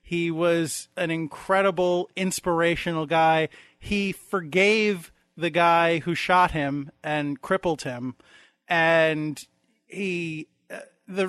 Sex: male